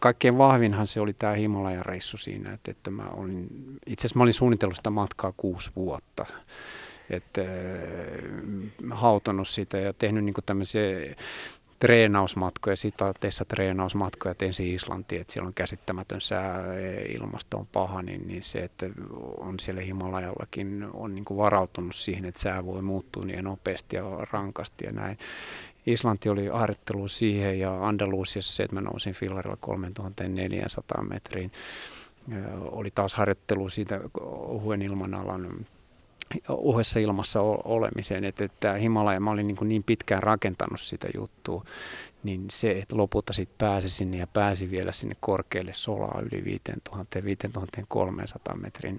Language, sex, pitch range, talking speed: Finnish, male, 95-105 Hz, 135 wpm